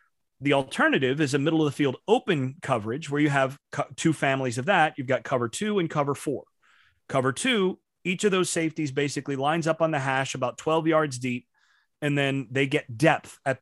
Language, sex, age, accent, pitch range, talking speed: English, male, 30-49, American, 135-170 Hz, 185 wpm